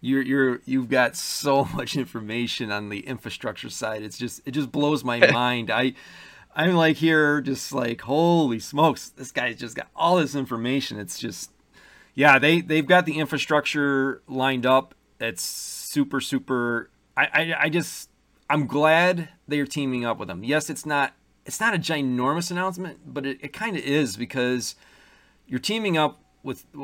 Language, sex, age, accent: English, male, 40-59, American